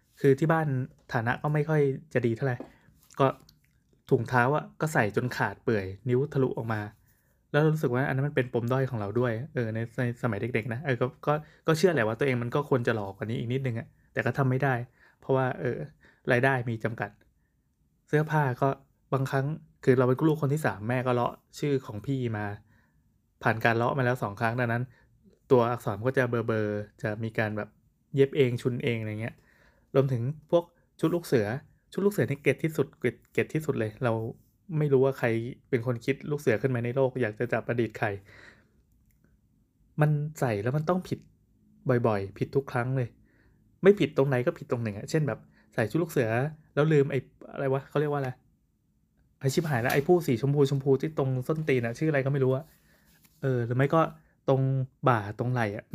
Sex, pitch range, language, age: male, 120-145 Hz, Thai, 20-39